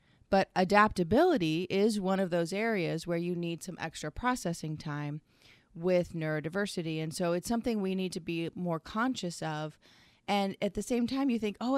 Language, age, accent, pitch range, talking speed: English, 30-49, American, 155-185 Hz, 180 wpm